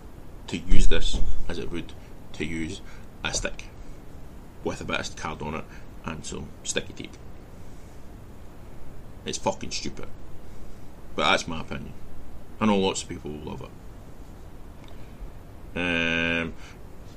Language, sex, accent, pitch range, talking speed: English, male, British, 80-105 Hz, 130 wpm